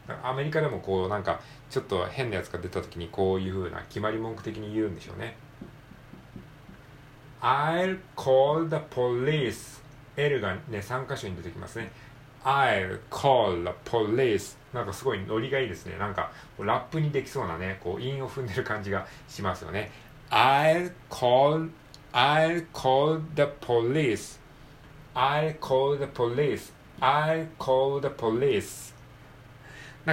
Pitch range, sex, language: 110-140 Hz, male, Japanese